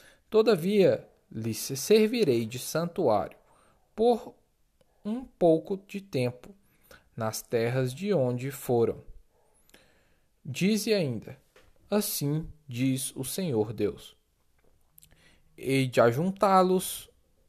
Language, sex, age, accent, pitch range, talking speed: Portuguese, male, 10-29, Brazilian, 115-185 Hz, 85 wpm